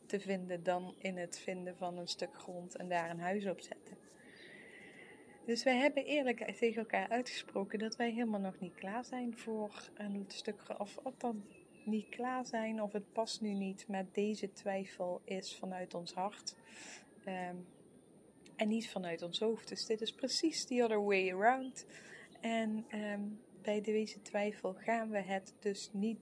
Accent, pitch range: Dutch, 190-220 Hz